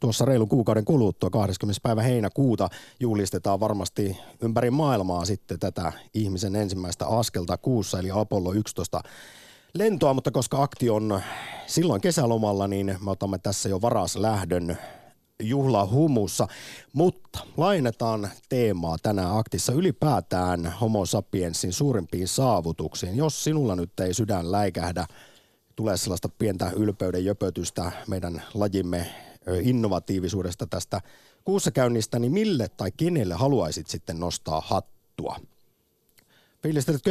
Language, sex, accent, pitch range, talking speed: Finnish, male, native, 95-125 Hz, 115 wpm